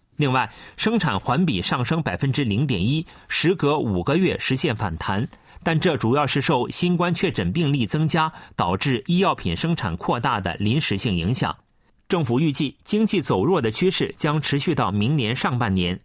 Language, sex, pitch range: Chinese, male, 110-165 Hz